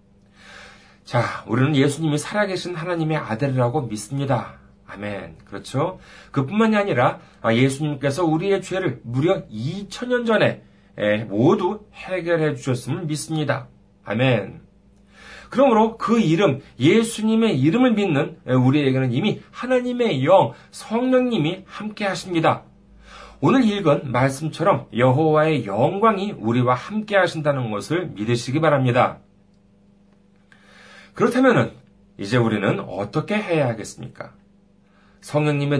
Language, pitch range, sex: Korean, 125-195 Hz, male